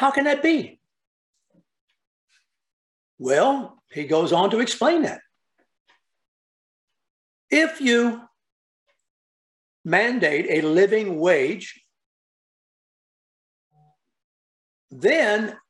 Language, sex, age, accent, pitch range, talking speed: English, male, 60-79, American, 170-255 Hz, 70 wpm